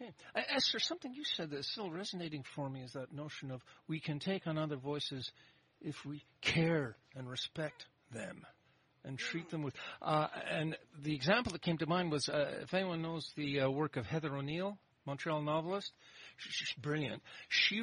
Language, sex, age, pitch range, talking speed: English, male, 50-69, 135-165 Hz, 180 wpm